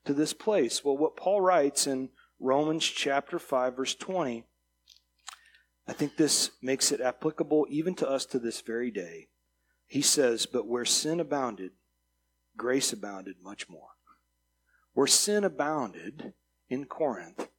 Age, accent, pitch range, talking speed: 40-59, American, 115-155 Hz, 140 wpm